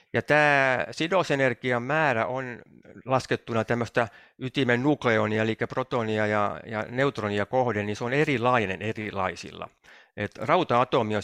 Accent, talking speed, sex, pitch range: native, 110 wpm, male, 105-135 Hz